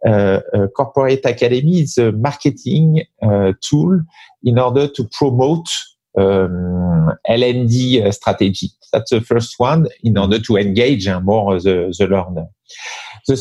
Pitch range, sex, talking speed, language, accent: 110-145 Hz, male, 135 wpm, English, French